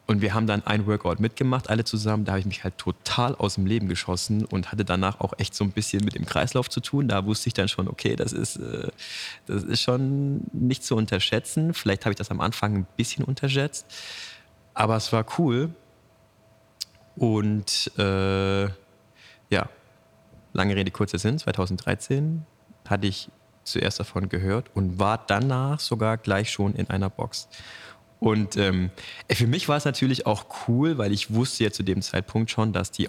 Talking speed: 180 wpm